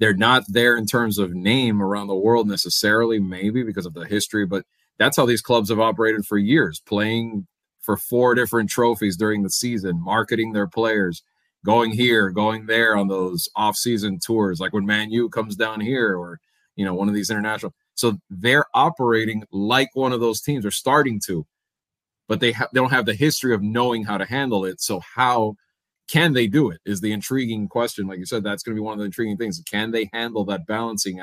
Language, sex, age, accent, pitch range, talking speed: English, male, 30-49, American, 105-120 Hz, 215 wpm